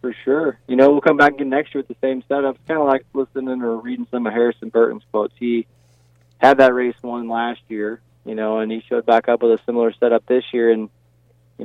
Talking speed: 245 wpm